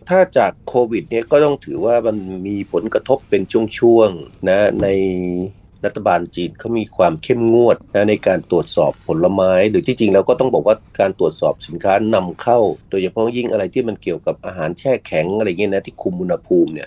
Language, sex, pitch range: Thai, male, 95-120 Hz